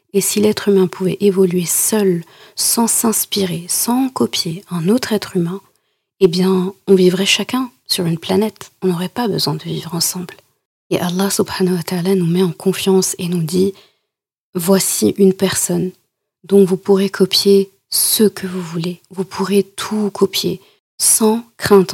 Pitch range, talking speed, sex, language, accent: 180-200 Hz, 160 wpm, female, French, French